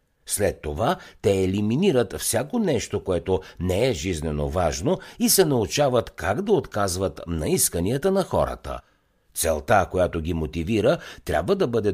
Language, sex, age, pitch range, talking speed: Bulgarian, male, 60-79, 85-140 Hz, 140 wpm